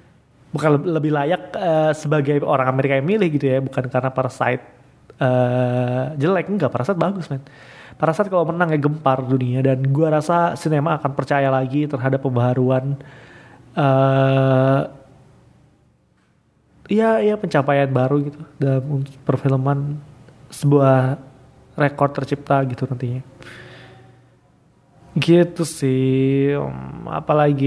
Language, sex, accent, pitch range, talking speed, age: Indonesian, male, native, 130-155 Hz, 115 wpm, 20-39